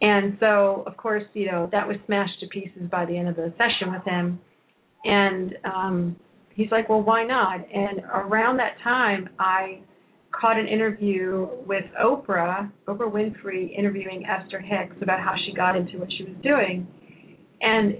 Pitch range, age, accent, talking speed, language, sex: 180-205 Hz, 40-59, American, 170 wpm, English, female